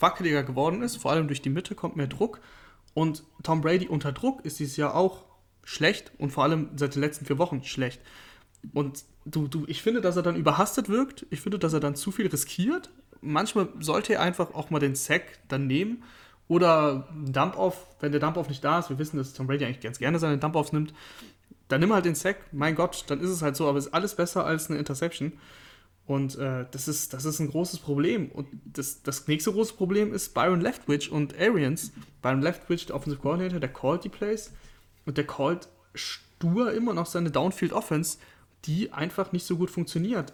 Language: German